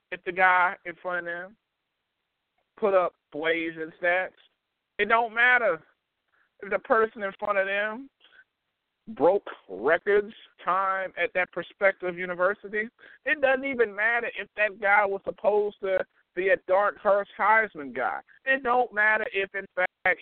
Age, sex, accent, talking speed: 50-69, male, American, 150 wpm